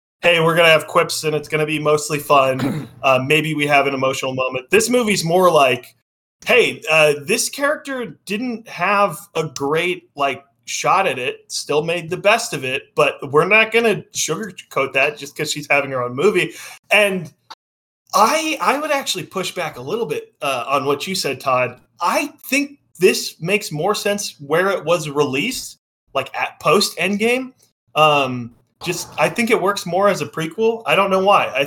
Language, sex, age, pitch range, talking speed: English, male, 20-39, 135-190 Hz, 190 wpm